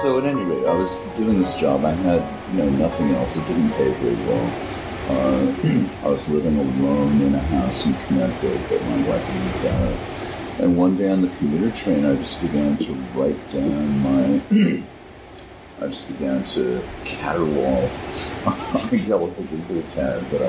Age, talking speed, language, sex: 50-69, 170 wpm, English, male